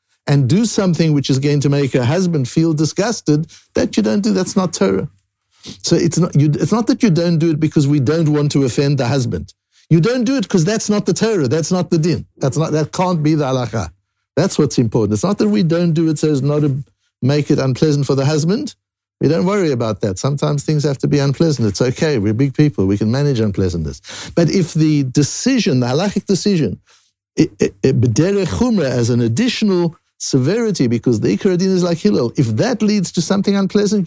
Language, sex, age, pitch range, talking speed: English, male, 60-79, 110-170 Hz, 215 wpm